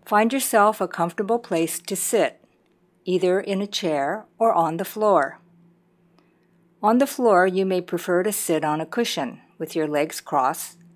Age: 50-69